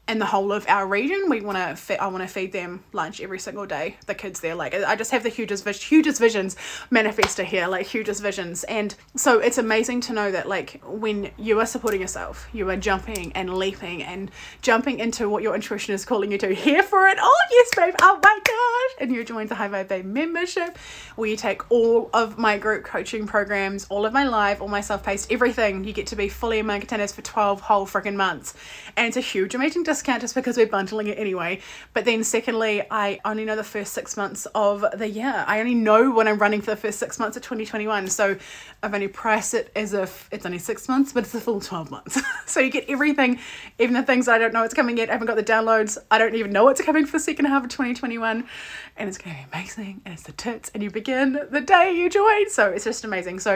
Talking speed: 240 wpm